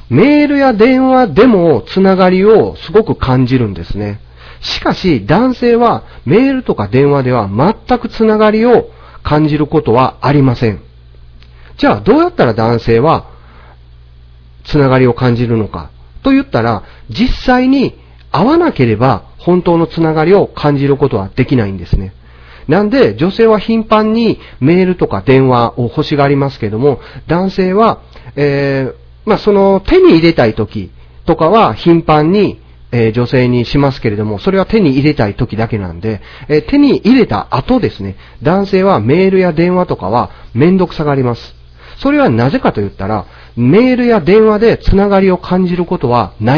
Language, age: Japanese, 40-59